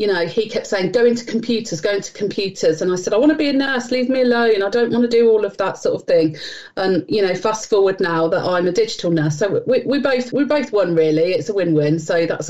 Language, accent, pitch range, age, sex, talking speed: English, British, 185-235 Hz, 40-59, female, 280 wpm